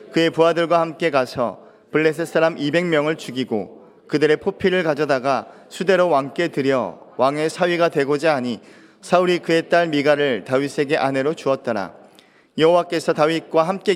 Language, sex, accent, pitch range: Korean, male, native, 140-175 Hz